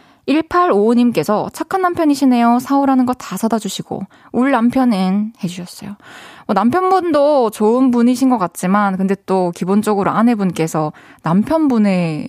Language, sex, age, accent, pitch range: Korean, female, 20-39, native, 200-295 Hz